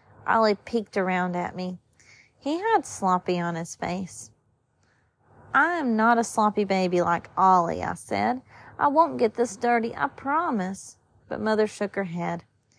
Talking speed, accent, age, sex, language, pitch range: 155 wpm, American, 30-49, female, English, 180-245 Hz